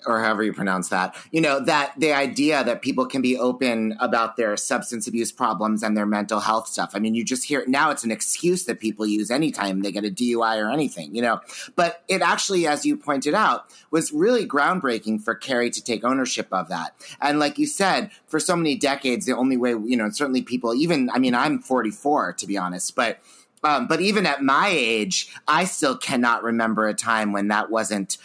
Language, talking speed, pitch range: English, 220 wpm, 115-160 Hz